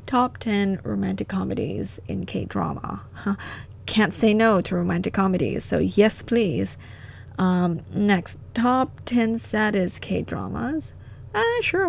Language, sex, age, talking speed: English, female, 20-39, 110 wpm